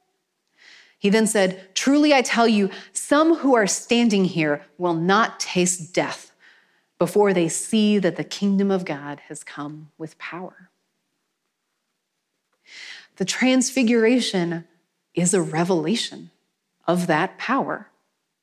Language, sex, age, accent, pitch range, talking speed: English, female, 30-49, American, 170-220 Hz, 115 wpm